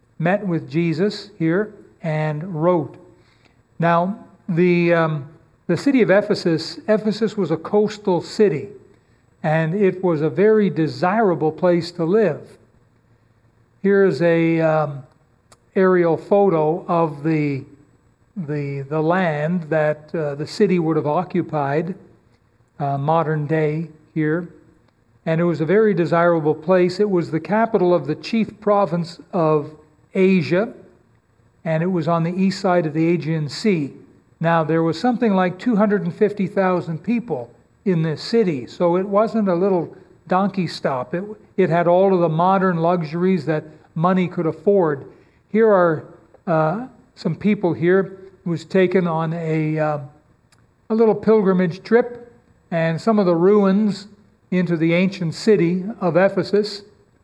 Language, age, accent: English, 60-79, American